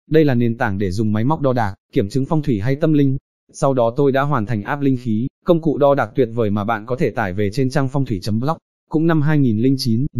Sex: male